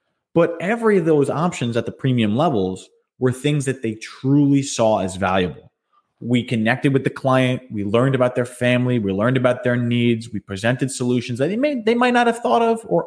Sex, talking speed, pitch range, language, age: male, 200 wpm, 105-140 Hz, English, 20-39